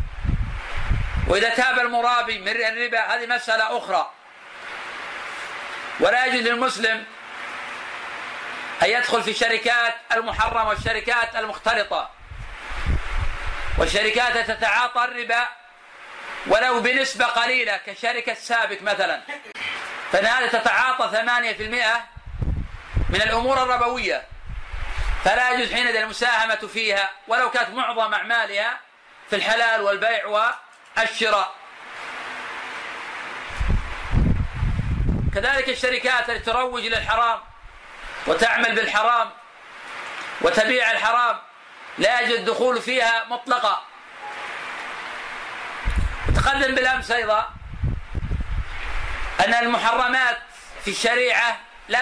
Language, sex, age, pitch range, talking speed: Arabic, male, 40-59, 225-245 Hz, 80 wpm